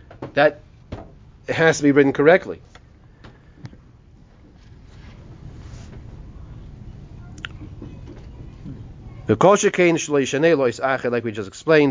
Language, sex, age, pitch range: English, male, 30-49, 120-160 Hz